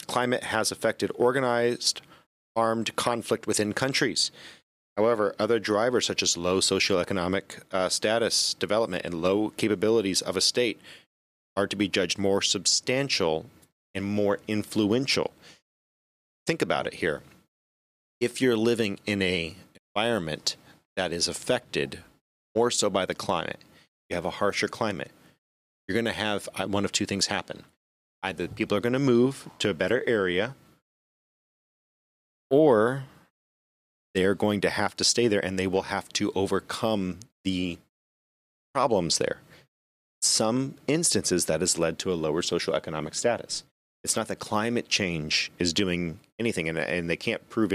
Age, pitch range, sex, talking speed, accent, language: 30-49, 85-110 Hz, male, 145 wpm, American, English